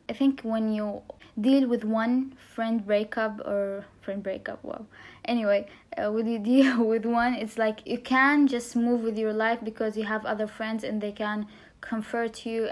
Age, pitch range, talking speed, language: 10-29, 215-240 Hz, 190 wpm, English